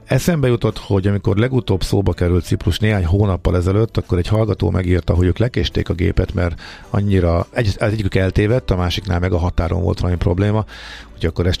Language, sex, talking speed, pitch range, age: Hungarian, male, 185 wpm, 90-110 Hz, 50-69